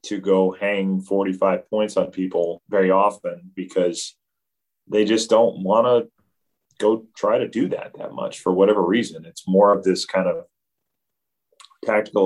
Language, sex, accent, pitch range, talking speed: English, male, American, 95-120 Hz, 155 wpm